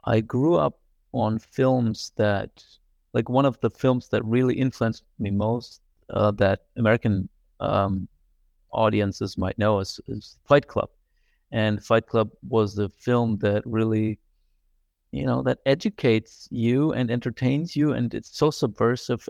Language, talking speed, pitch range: English, 145 wpm, 105-125 Hz